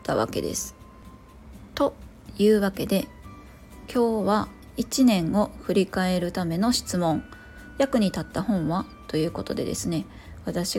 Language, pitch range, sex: Japanese, 170-220 Hz, female